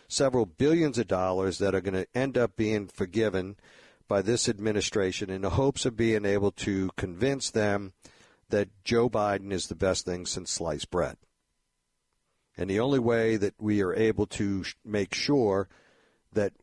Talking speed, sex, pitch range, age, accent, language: 170 wpm, male, 95-120 Hz, 50-69, American, English